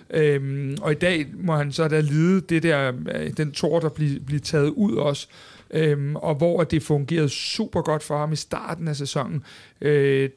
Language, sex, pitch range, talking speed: Danish, male, 145-170 Hz, 190 wpm